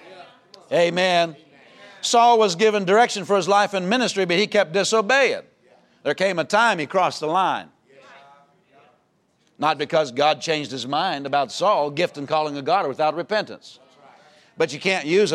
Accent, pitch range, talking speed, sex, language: American, 150-205 Hz, 160 wpm, male, English